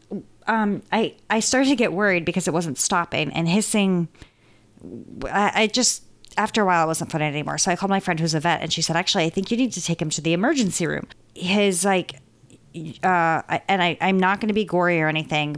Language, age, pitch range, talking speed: English, 30-49, 165-210 Hz, 225 wpm